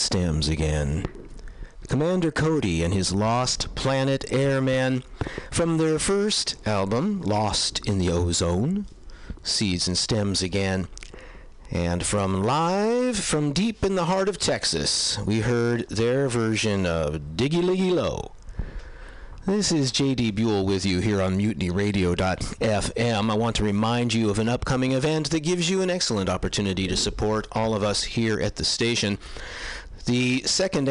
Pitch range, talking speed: 95-130 Hz, 145 wpm